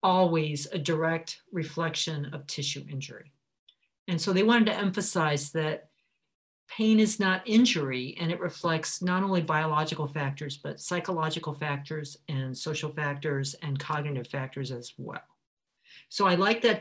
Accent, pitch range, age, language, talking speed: American, 150-185 Hz, 50-69, English, 145 wpm